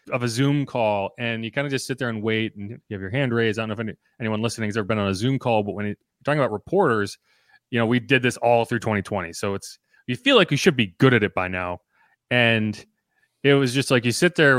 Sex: male